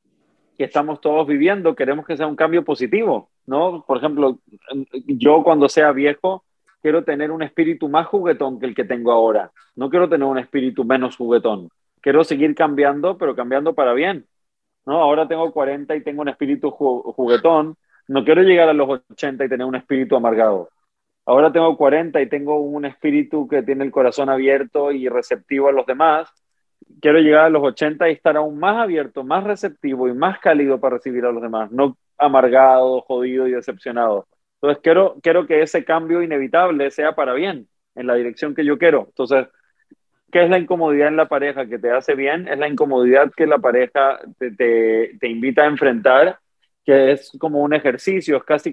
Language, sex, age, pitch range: Spanish, male, 30-49, 130-160 Hz